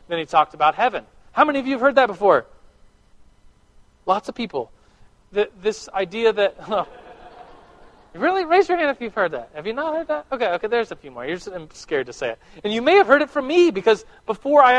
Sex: male